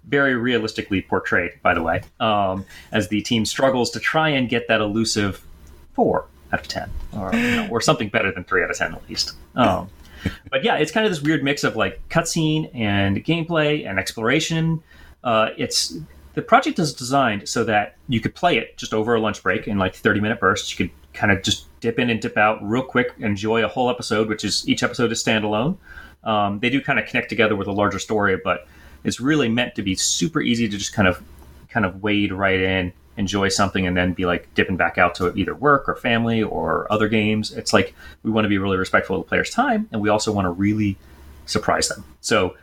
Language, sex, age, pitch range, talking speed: English, male, 30-49, 95-120 Hz, 225 wpm